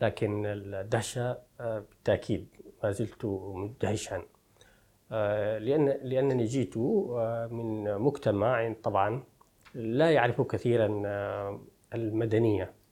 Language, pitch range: Arabic, 105-130 Hz